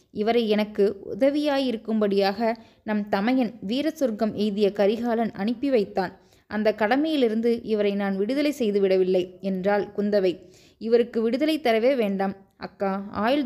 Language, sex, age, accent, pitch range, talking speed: Tamil, female, 20-39, native, 200-240 Hz, 115 wpm